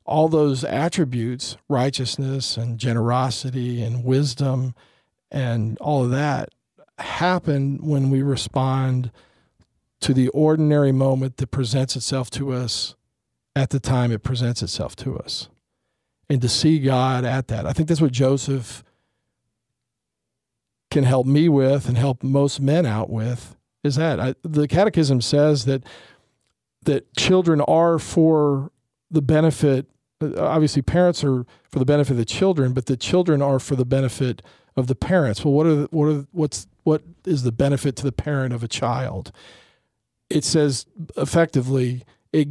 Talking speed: 150 wpm